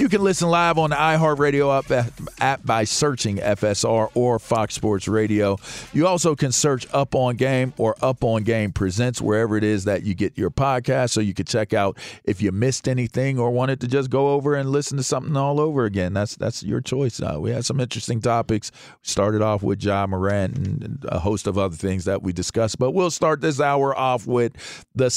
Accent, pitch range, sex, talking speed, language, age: American, 110-150 Hz, male, 215 wpm, English, 40-59